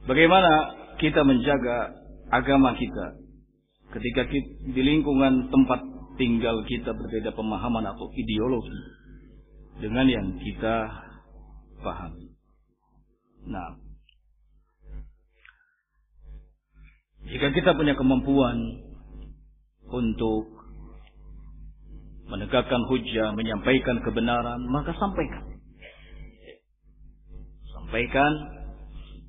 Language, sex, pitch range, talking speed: Indonesian, male, 105-135 Hz, 70 wpm